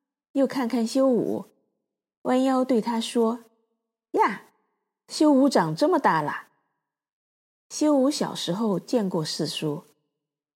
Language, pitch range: Chinese, 195-250 Hz